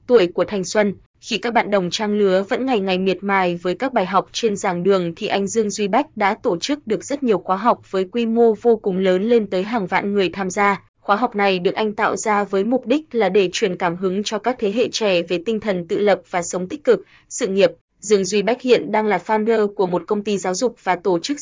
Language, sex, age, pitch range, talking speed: Vietnamese, female, 20-39, 185-225 Hz, 265 wpm